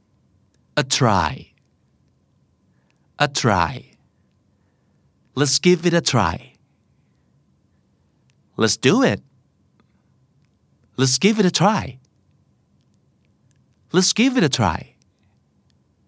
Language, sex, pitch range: Thai, male, 110-165 Hz